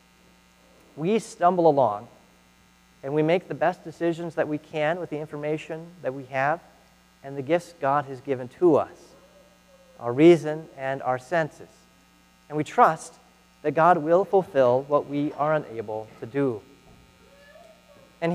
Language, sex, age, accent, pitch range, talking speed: English, male, 40-59, American, 120-175 Hz, 145 wpm